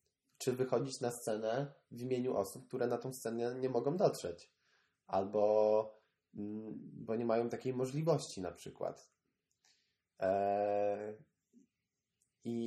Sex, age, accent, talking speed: male, 20-39, native, 110 wpm